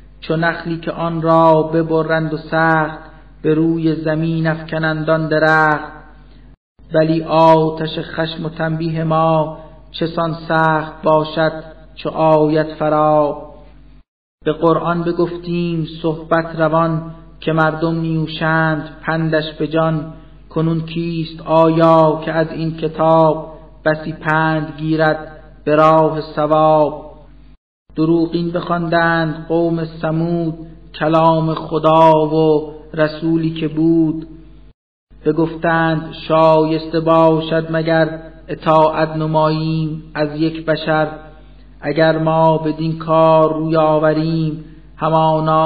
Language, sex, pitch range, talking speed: Persian, male, 155-160 Hz, 100 wpm